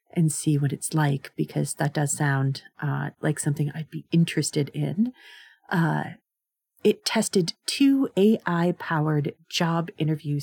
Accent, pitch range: American, 150-230 Hz